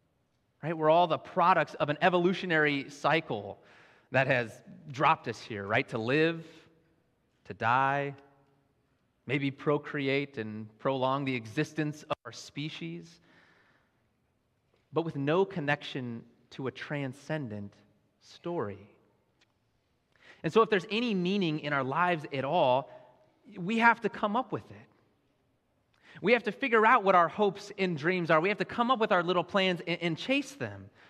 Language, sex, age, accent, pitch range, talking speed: English, male, 30-49, American, 140-185 Hz, 145 wpm